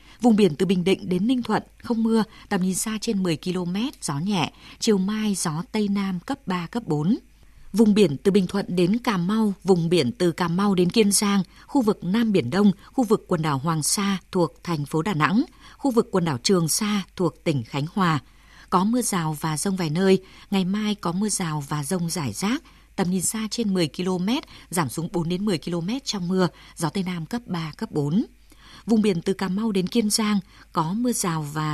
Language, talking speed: Vietnamese, 225 wpm